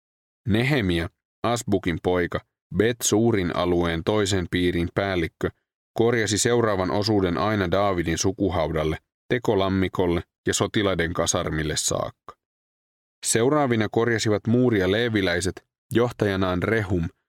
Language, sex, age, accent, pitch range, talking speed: Finnish, male, 30-49, native, 85-110 Hz, 90 wpm